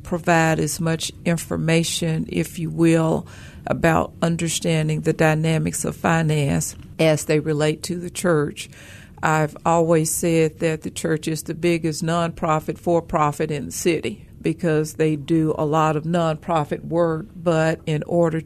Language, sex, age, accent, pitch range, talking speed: English, female, 60-79, American, 155-170 Hz, 145 wpm